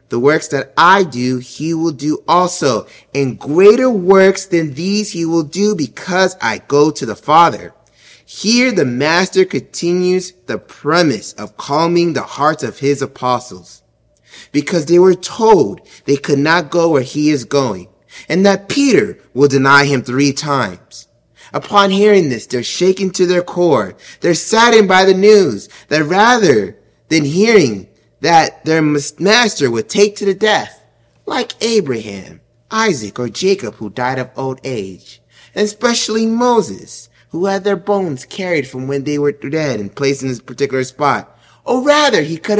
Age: 30-49